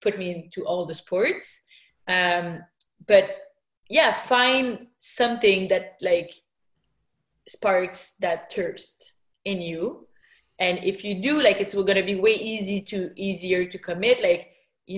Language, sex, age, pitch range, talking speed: English, female, 20-39, 185-230 Hz, 140 wpm